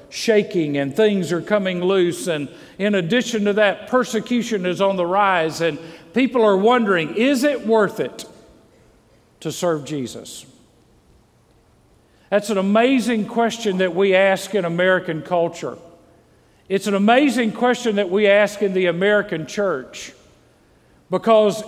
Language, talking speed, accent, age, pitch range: English, 135 wpm, American, 50-69, 165-215 Hz